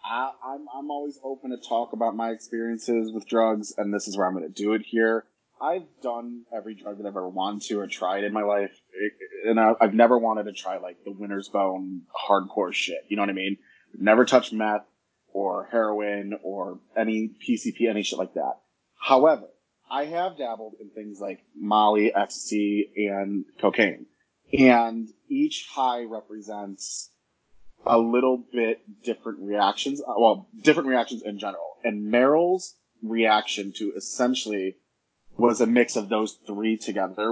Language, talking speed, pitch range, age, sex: English, 165 wpm, 105-125 Hz, 20-39, male